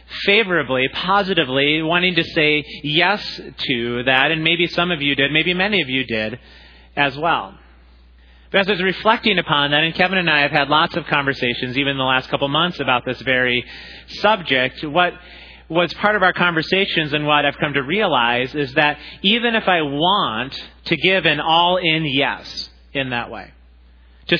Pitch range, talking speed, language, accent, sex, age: 120-180 Hz, 180 wpm, English, American, male, 30-49